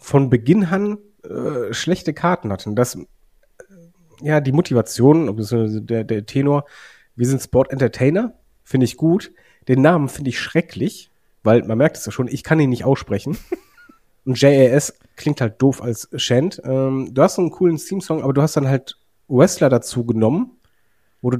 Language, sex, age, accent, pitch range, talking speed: German, male, 30-49, German, 120-155 Hz, 175 wpm